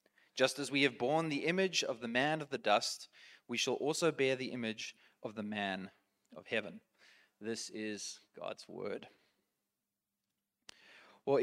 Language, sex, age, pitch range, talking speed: English, male, 20-39, 120-175 Hz, 150 wpm